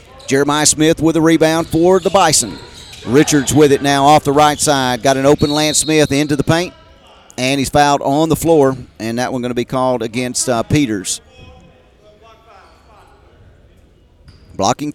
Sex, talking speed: male, 165 wpm